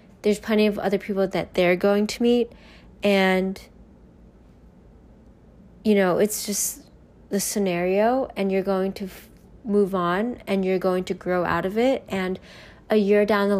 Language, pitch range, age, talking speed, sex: English, 185-215 Hz, 20-39, 160 wpm, female